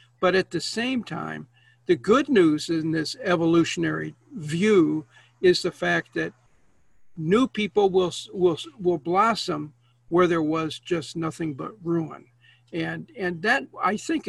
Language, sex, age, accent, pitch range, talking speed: English, male, 60-79, American, 165-210 Hz, 145 wpm